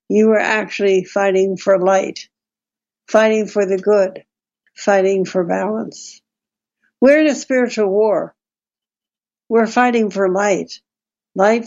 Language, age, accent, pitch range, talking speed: English, 60-79, American, 190-225 Hz, 120 wpm